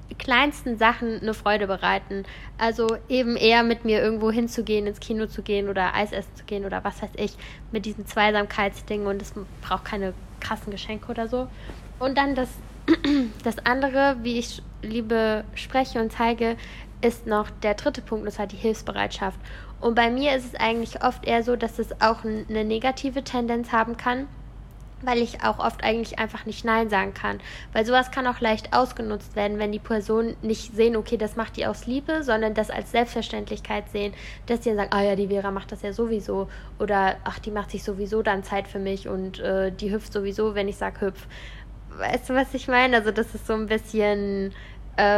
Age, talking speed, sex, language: 10-29, 200 wpm, female, German